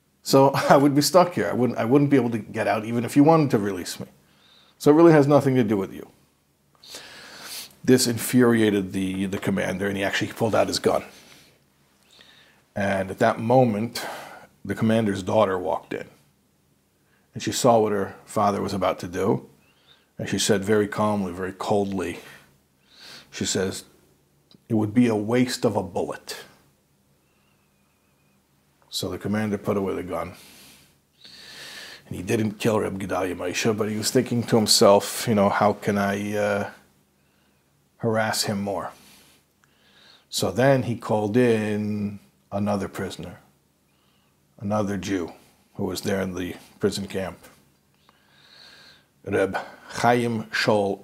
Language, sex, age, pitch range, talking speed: English, male, 50-69, 70-110 Hz, 150 wpm